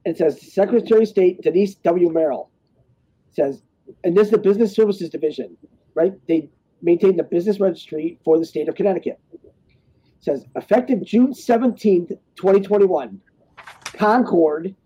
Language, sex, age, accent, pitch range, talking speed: English, male, 40-59, American, 165-205 Hz, 135 wpm